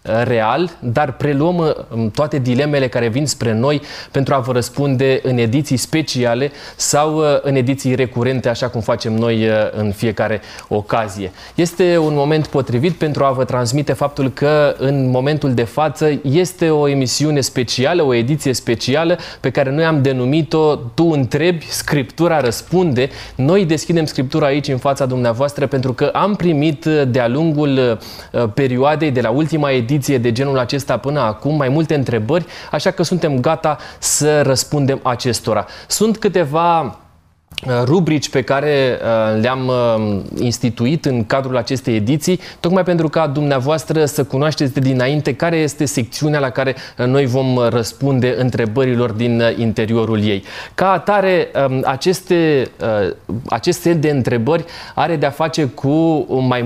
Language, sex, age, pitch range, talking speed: Romanian, male, 20-39, 125-155 Hz, 140 wpm